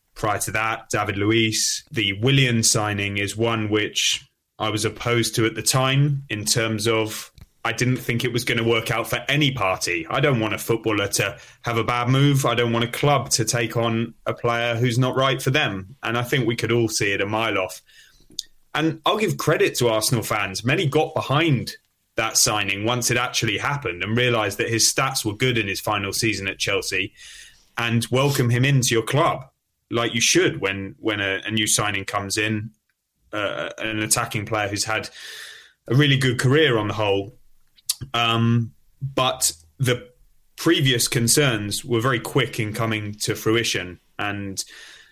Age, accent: 20-39, British